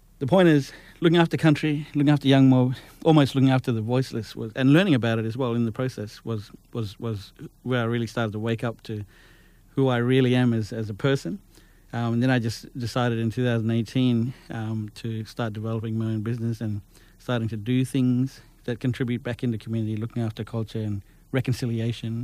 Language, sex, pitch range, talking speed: English, male, 115-130 Hz, 200 wpm